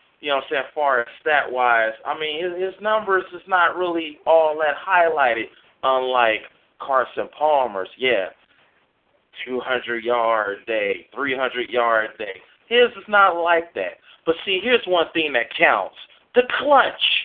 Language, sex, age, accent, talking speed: English, male, 40-59, American, 145 wpm